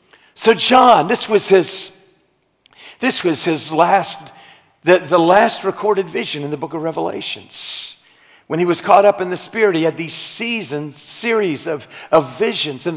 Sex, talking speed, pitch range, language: male, 165 wpm, 160-220 Hz, English